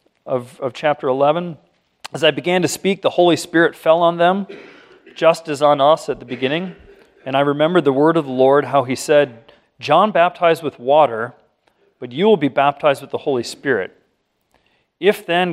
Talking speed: 185 wpm